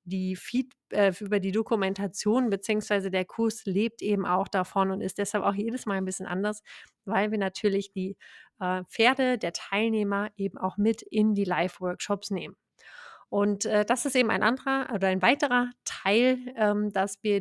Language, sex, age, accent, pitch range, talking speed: German, female, 30-49, German, 195-220 Hz, 175 wpm